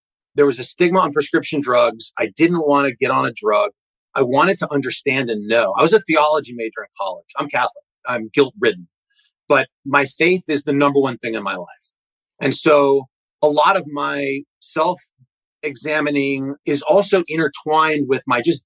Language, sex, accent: English, male, American